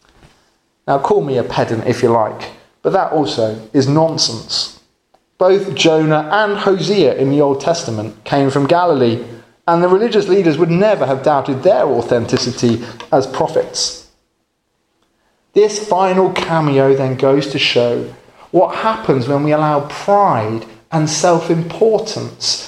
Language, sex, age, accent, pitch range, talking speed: English, male, 30-49, British, 125-175 Hz, 140 wpm